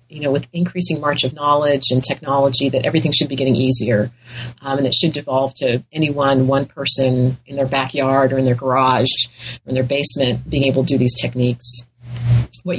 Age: 40-59